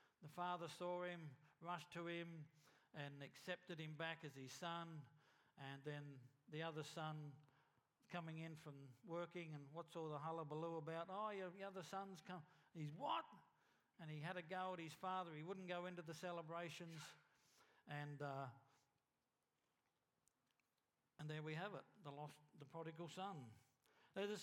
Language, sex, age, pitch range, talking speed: English, male, 60-79, 150-190 Hz, 155 wpm